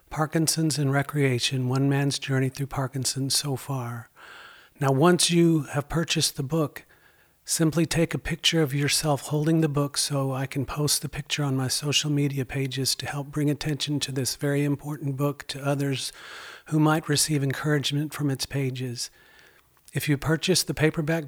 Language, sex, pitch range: English, male, 130-150 Hz